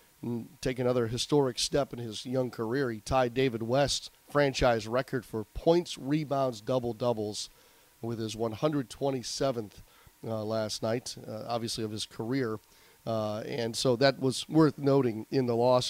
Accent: American